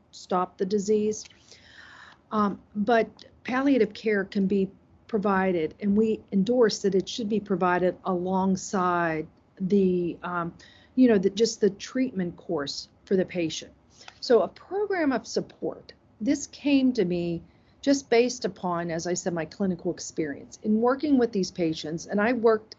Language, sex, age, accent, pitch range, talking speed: English, female, 50-69, American, 170-215 Hz, 150 wpm